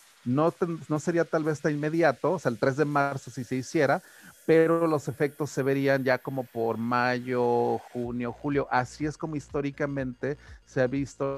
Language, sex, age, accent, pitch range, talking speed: Spanish, male, 40-59, Mexican, 125-150 Hz, 180 wpm